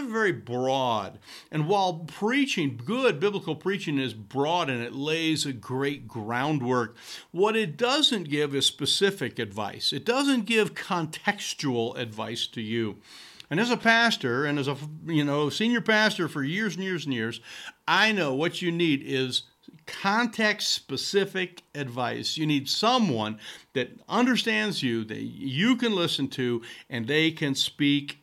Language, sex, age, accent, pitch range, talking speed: English, male, 50-69, American, 135-190 Hz, 150 wpm